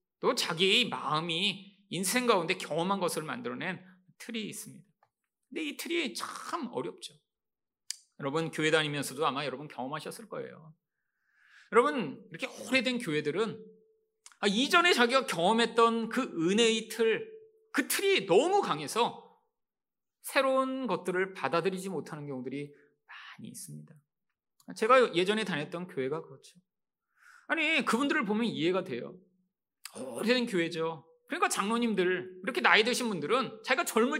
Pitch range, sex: 175-290 Hz, male